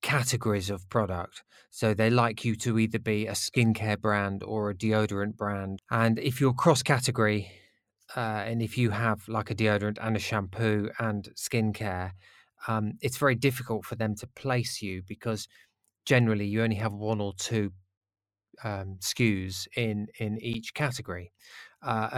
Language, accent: English, British